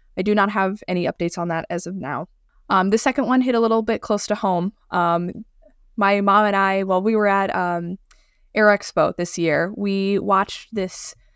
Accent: American